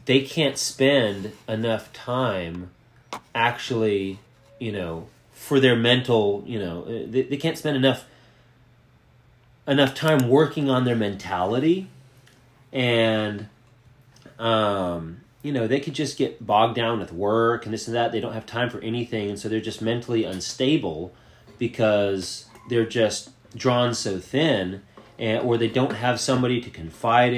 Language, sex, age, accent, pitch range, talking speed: English, male, 30-49, American, 110-135 Hz, 145 wpm